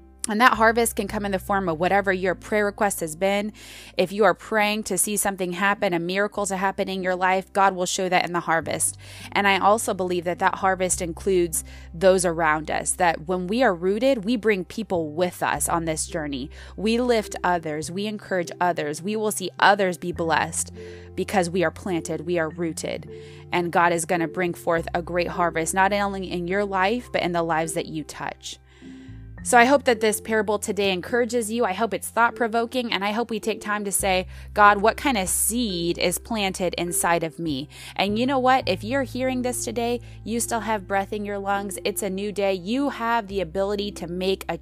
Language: English